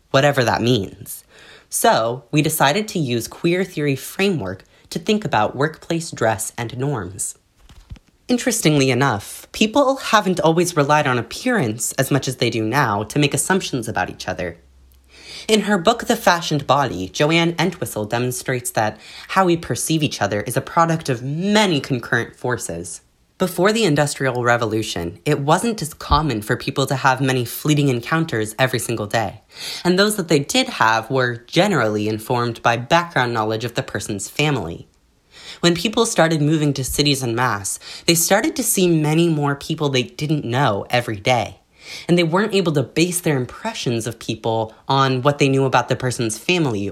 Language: English